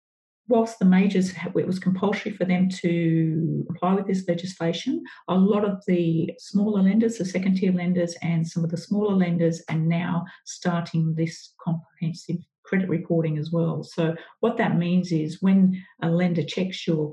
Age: 50-69